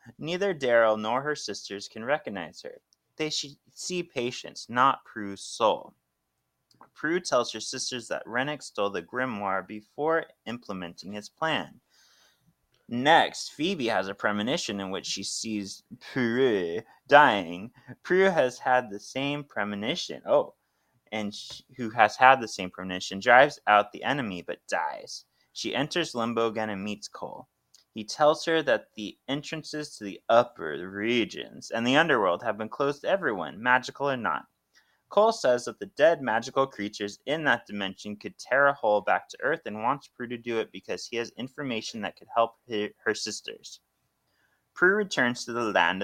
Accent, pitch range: American, 105-145 Hz